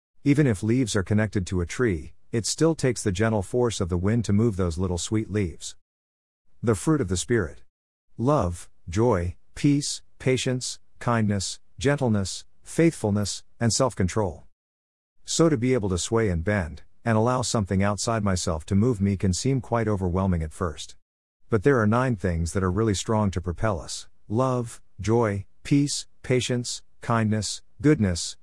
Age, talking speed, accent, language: 50-69, 165 wpm, American, English